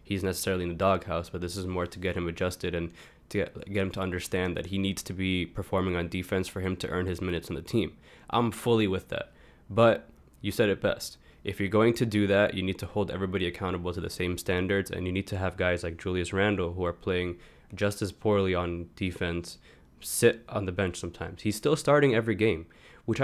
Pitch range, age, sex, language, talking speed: 90-105 Hz, 20-39, male, English, 230 wpm